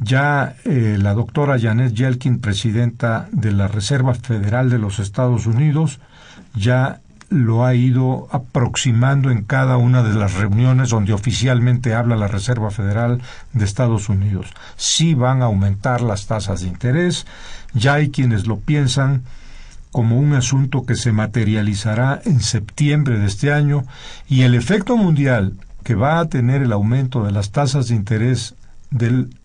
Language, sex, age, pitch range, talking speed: Spanish, male, 50-69, 110-135 Hz, 155 wpm